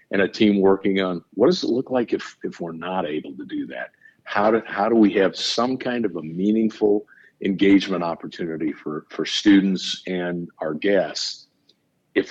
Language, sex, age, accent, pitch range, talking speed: English, male, 50-69, American, 95-105 Hz, 185 wpm